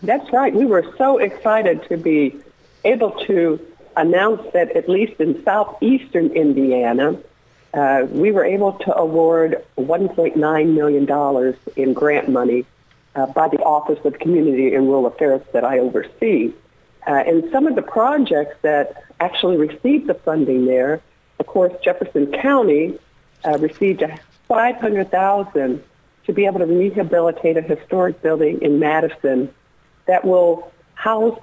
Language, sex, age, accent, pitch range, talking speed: English, female, 50-69, American, 140-185 Hz, 135 wpm